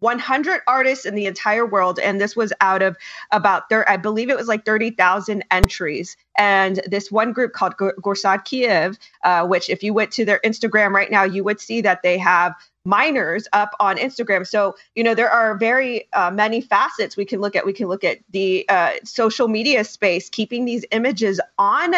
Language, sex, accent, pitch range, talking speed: English, female, American, 195-240 Hz, 195 wpm